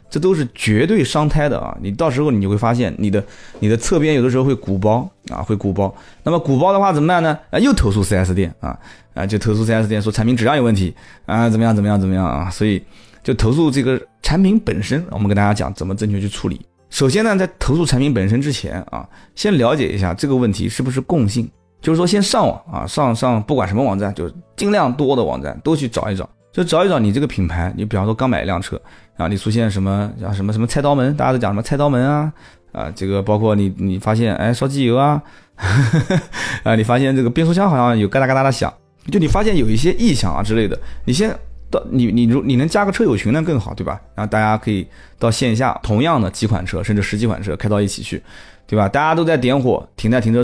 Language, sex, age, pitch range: Chinese, male, 20-39, 100-140 Hz